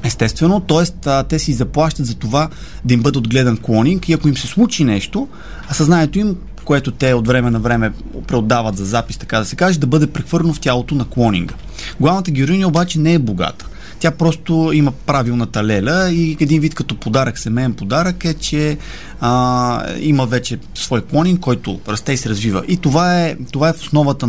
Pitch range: 120-155 Hz